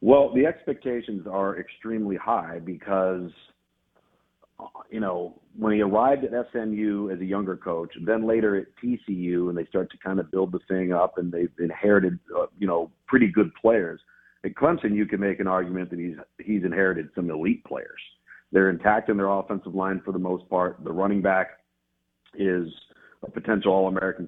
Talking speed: 180 wpm